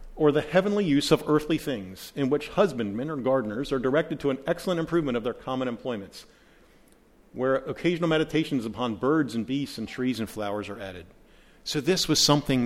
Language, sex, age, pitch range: English, male, 50-69, 120-155 Hz